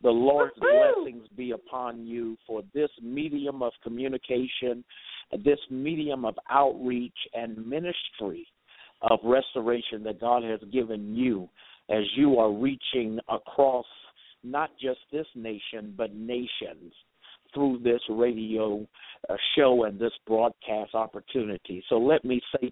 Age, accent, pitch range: 50-69, American, 110-135 Hz